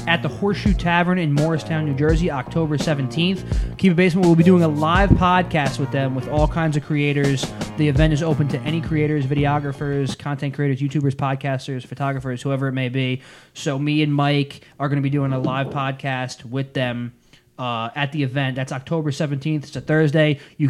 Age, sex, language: 20-39, male, English